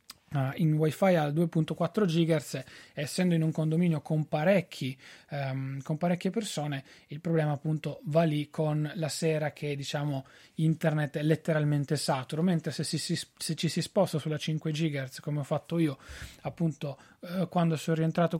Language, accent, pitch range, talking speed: Italian, native, 155-180 Hz, 145 wpm